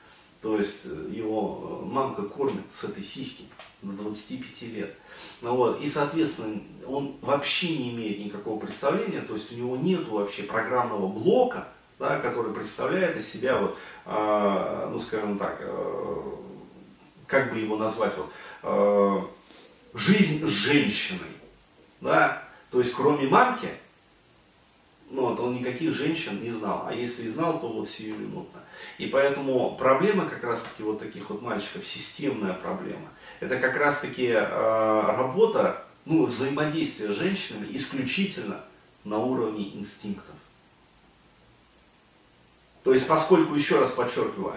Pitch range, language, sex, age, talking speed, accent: 110-150 Hz, Russian, male, 30-49, 125 wpm, native